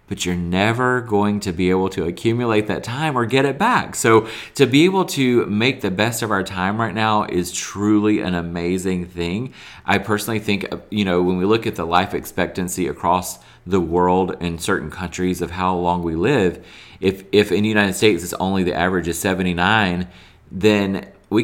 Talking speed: 195 wpm